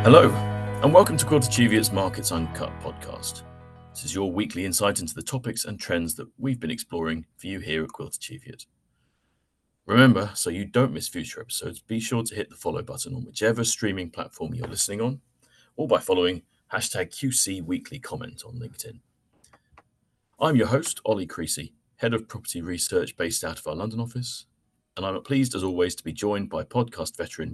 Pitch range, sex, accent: 90-125 Hz, male, British